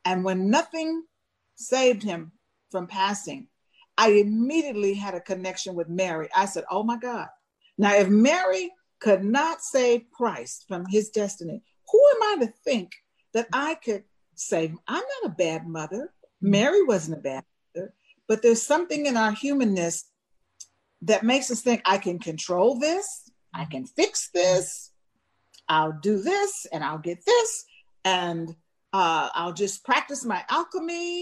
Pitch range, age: 180-290 Hz, 50-69